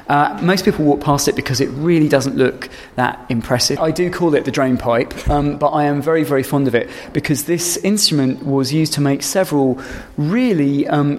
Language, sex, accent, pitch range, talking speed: English, male, British, 130-155 Hz, 215 wpm